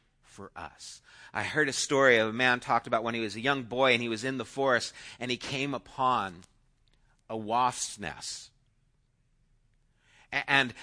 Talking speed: 170 wpm